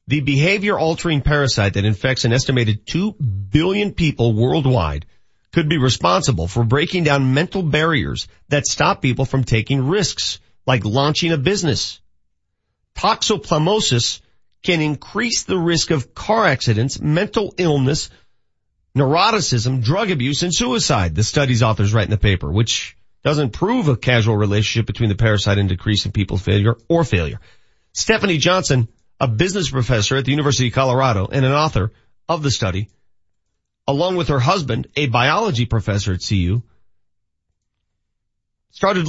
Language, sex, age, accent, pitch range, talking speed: English, male, 40-59, American, 110-170 Hz, 145 wpm